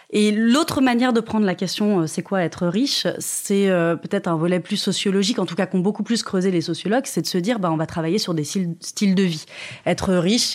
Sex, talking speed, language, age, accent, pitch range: female, 260 wpm, French, 20-39, French, 175-225 Hz